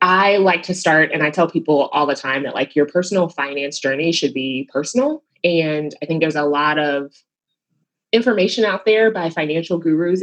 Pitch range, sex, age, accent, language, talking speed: 150-195 Hz, female, 20-39, American, English, 195 wpm